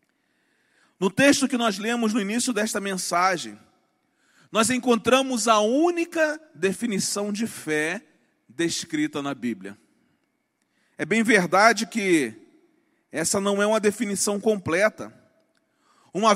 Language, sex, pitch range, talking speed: Portuguese, male, 205-270 Hz, 110 wpm